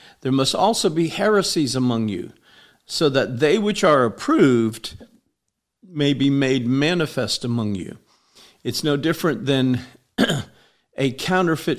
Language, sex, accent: English, male, American